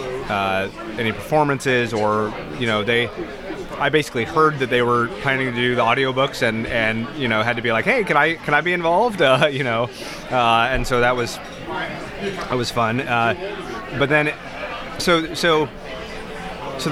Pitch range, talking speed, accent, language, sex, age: 115-140 Hz, 175 wpm, American, English, male, 30-49